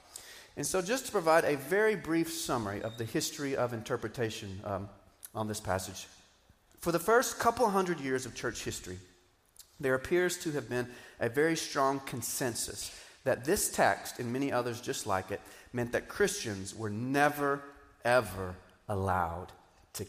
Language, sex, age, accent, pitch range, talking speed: English, male, 40-59, American, 105-140 Hz, 160 wpm